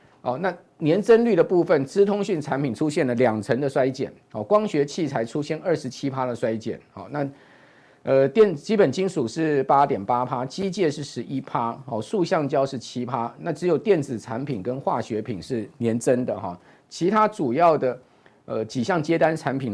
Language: Chinese